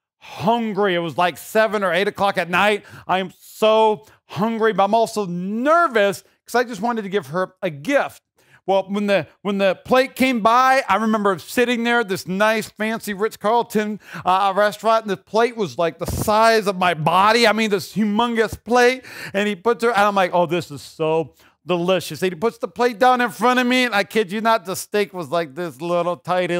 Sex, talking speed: male, 215 wpm